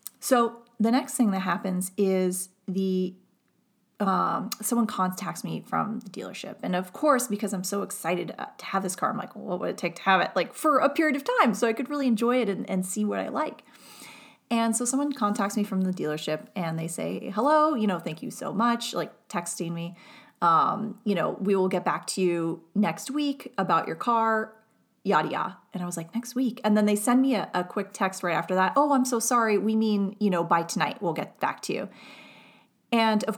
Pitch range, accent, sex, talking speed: 185-240 Hz, American, female, 225 wpm